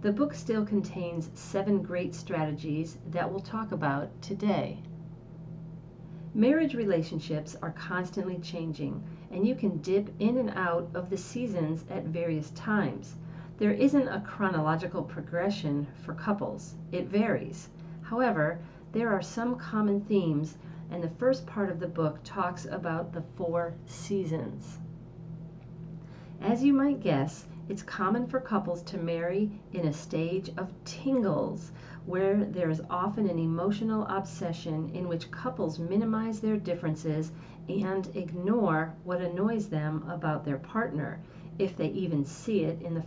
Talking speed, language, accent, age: 140 wpm, English, American, 40-59